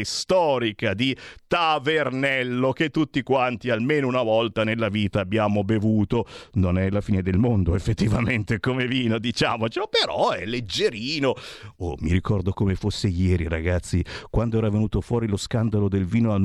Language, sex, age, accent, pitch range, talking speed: Italian, male, 50-69, native, 100-155 Hz, 155 wpm